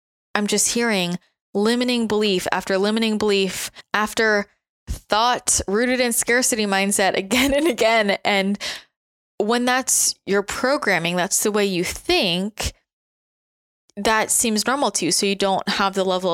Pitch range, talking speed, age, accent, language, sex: 175-205 Hz, 140 wpm, 20-39, American, English, female